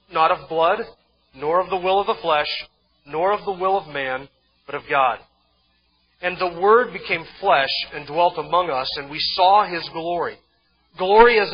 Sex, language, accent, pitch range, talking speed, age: male, English, American, 150-185 Hz, 180 wpm, 40-59